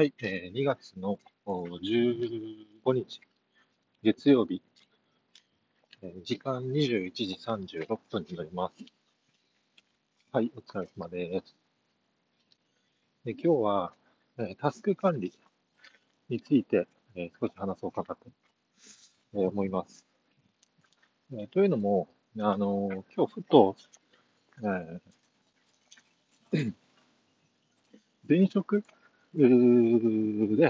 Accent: native